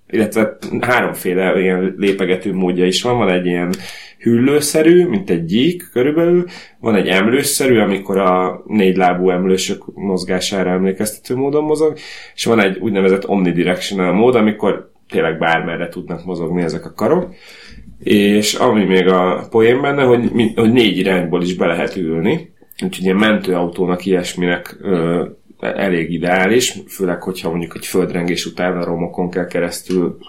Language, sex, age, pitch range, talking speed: Hungarian, male, 30-49, 90-105 Hz, 140 wpm